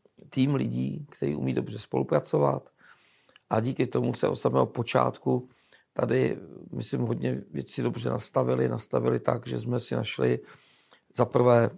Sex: male